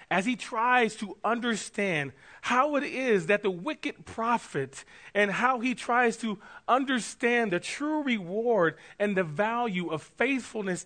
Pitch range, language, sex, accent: 180-240 Hz, English, male, American